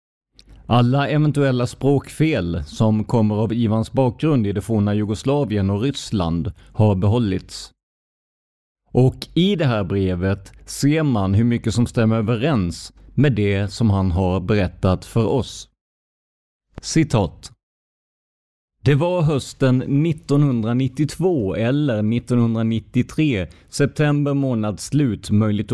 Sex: male